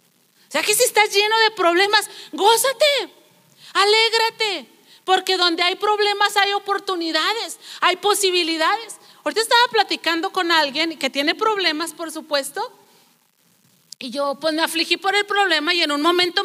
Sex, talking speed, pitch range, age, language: female, 145 wpm, 245-360 Hz, 40-59, Spanish